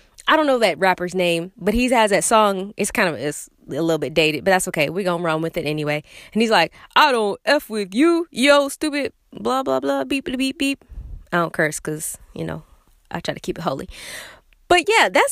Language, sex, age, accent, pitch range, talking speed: English, female, 20-39, American, 200-305 Hz, 230 wpm